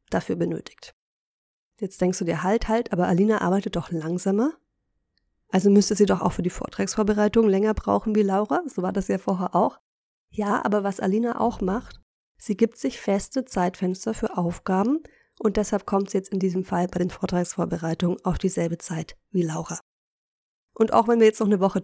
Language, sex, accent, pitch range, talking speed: German, female, German, 180-210 Hz, 185 wpm